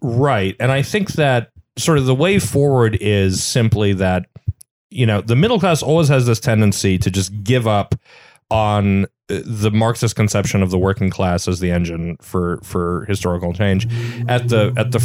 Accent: American